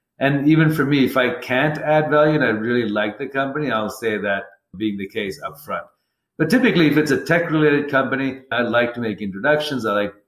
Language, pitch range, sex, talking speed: English, 105-130 Hz, male, 215 wpm